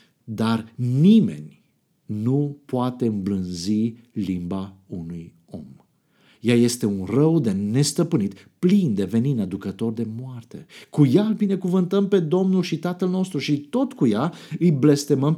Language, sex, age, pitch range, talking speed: Romanian, male, 50-69, 115-180 Hz, 135 wpm